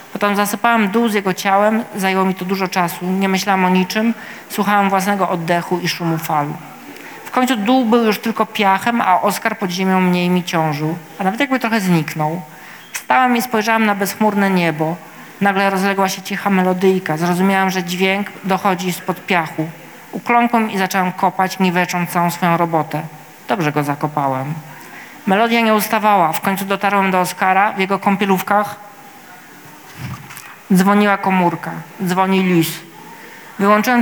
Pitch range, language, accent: 170-205 Hz, Polish, native